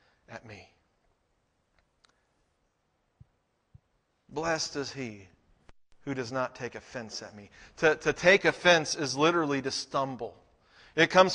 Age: 50-69